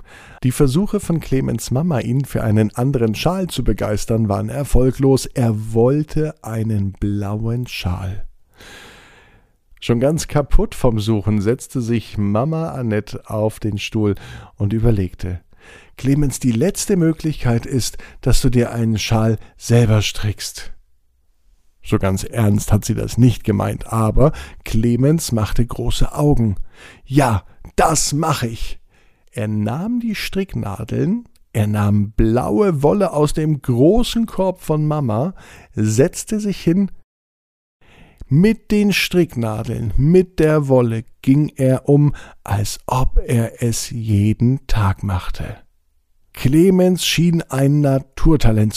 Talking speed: 120 wpm